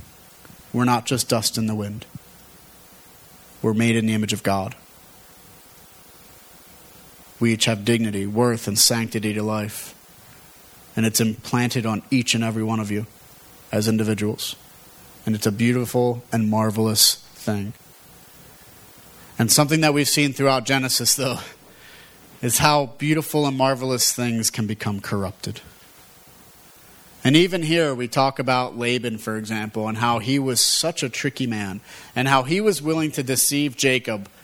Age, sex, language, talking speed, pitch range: 30-49, male, English, 145 wpm, 110-140 Hz